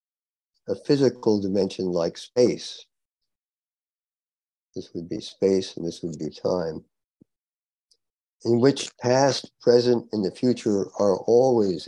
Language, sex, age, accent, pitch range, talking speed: English, male, 50-69, American, 85-115 Hz, 115 wpm